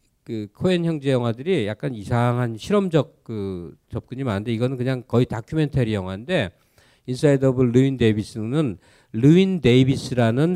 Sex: male